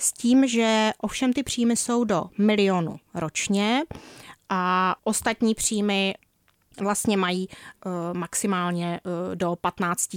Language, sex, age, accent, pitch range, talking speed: Czech, female, 30-49, native, 180-225 Hz, 105 wpm